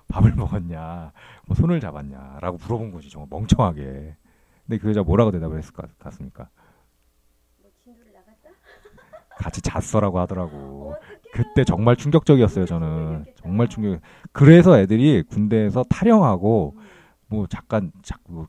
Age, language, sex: 40-59, Korean, male